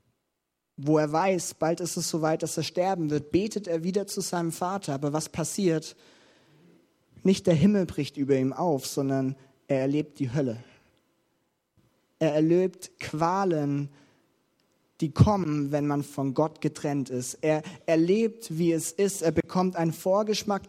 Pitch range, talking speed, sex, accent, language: 140-175 Hz, 150 wpm, male, German, German